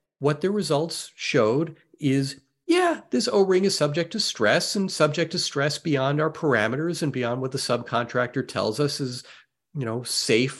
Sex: male